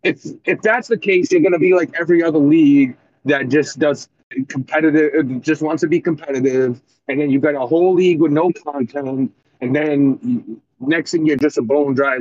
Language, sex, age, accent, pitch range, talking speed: English, male, 30-49, American, 140-210 Hz, 200 wpm